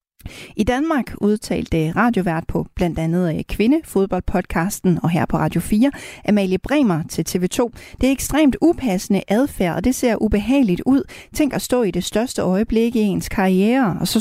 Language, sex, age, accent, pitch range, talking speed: Danish, female, 40-59, native, 185-250 Hz, 170 wpm